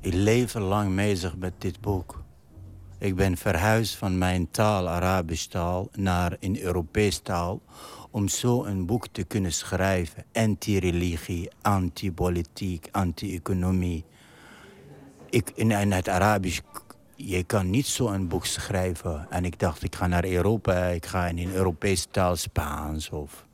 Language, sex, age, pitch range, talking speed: Dutch, male, 60-79, 90-105 Hz, 140 wpm